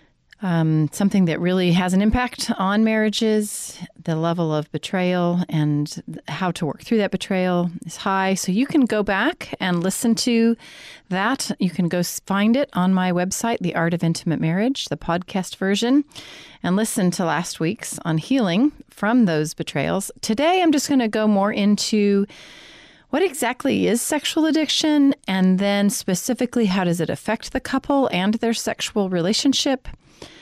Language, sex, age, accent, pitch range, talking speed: English, female, 40-59, American, 175-240 Hz, 165 wpm